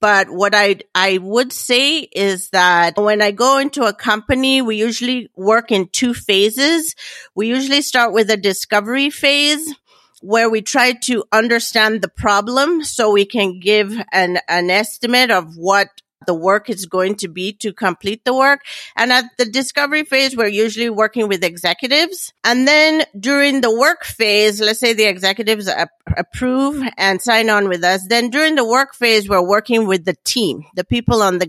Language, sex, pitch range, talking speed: English, female, 185-240 Hz, 175 wpm